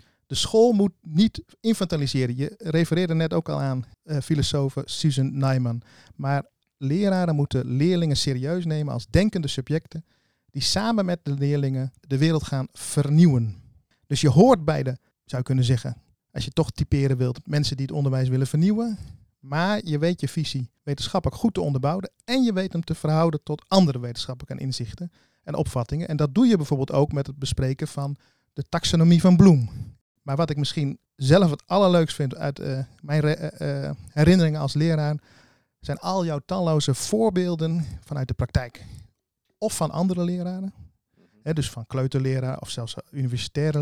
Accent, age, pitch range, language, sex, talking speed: Dutch, 40-59, 135-165 Hz, Dutch, male, 165 wpm